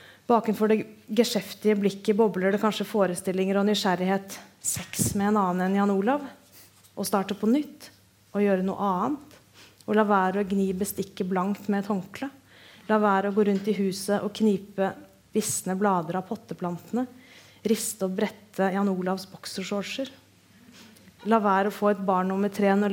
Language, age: English, 30-49